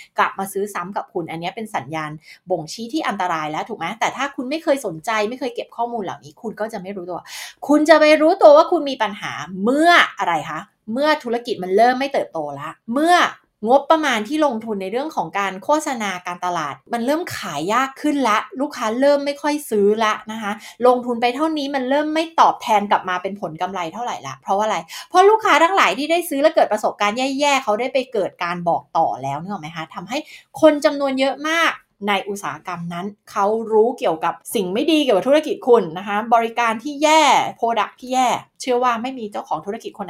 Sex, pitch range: female, 195-280 Hz